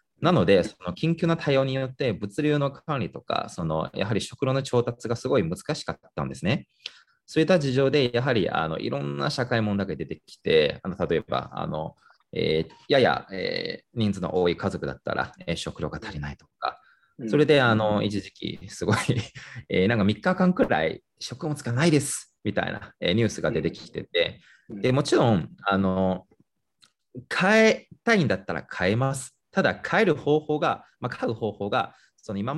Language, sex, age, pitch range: English, male, 20-39, 95-140 Hz